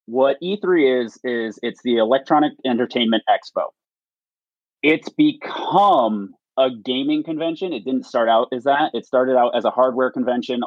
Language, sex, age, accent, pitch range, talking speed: English, male, 30-49, American, 110-135 Hz, 150 wpm